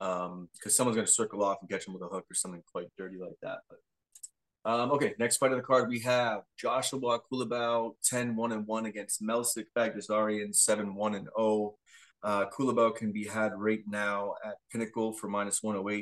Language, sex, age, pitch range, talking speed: English, male, 20-39, 105-125 Hz, 200 wpm